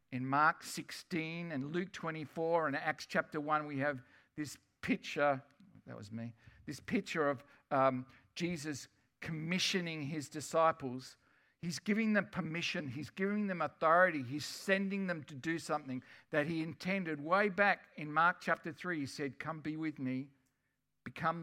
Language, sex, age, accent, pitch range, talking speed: English, male, 50-69, Australian, 140-180 Hz, 155 wpm